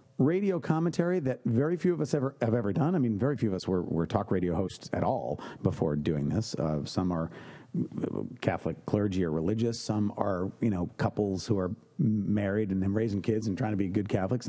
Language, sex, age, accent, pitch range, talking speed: English, male, 50-69, American, 100-140 Hz, 210 wpm